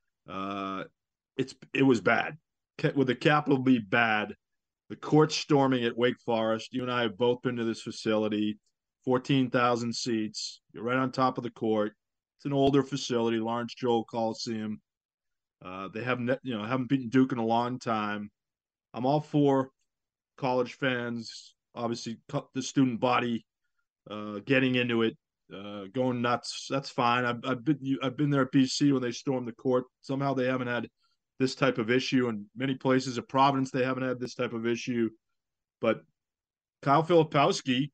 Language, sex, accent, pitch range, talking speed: English, male, American, 115-135 Hz, 175 wpm